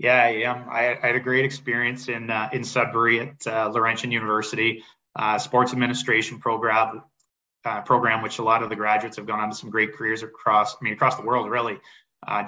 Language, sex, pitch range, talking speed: English, male, 110-125 Hz, 205 wpm